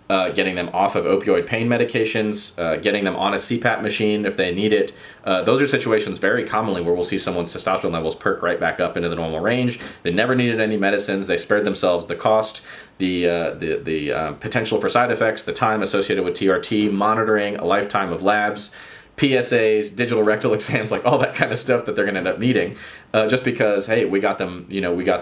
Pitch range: 90-110 Hz